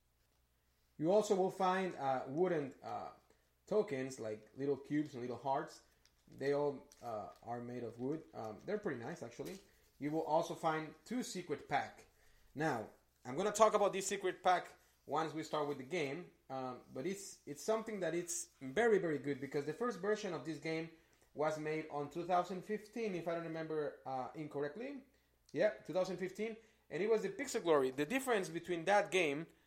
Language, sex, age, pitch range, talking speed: English, male, 30-49, 135-185 Hz, 180 wpm